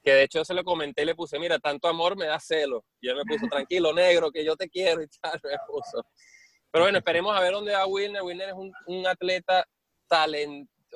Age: 20-39